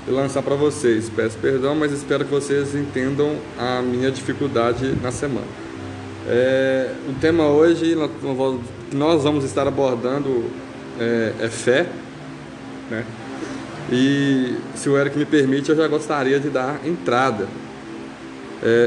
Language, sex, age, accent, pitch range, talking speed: Portuguese, male, 20-39, Brazilian, 125-165 Hz, 130 wpm